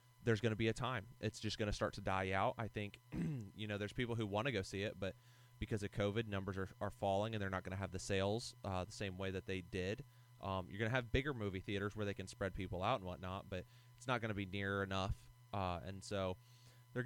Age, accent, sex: 30-49, American, male